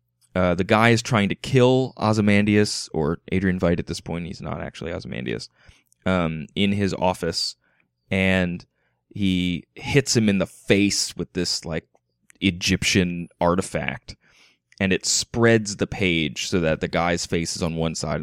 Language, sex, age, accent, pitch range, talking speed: English, male, 20-39, American, 85-100 Hz, 160 wpm